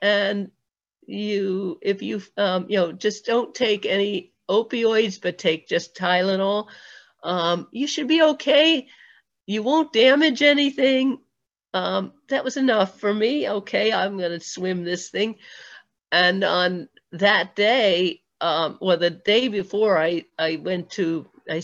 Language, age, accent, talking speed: English, 50-69, American, 140 wpm